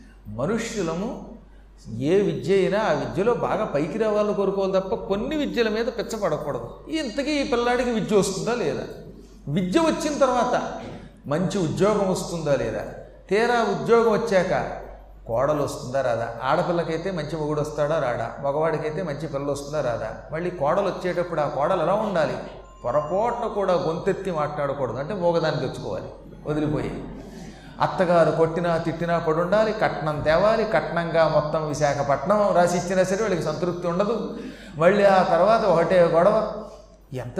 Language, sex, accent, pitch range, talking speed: Telugu, male, native, 160-215 Hz, 125 wpm